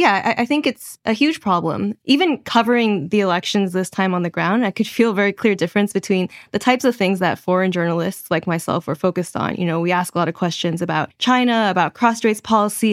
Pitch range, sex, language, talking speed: 180-220 Hz, female, English, 230 wpm